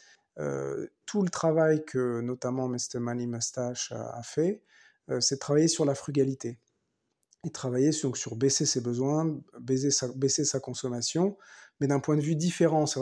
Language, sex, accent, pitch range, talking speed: French, male, French, 130-155 Hz, 180 wpm